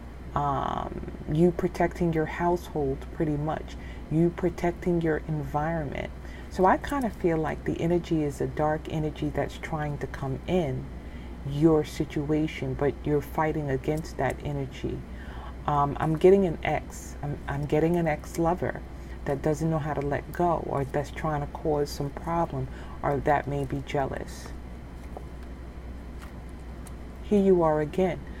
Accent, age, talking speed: American, 40-59, 145 wpm